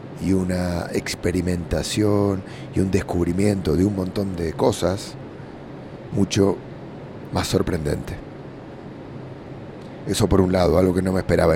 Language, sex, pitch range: English, male, 90-110 Hz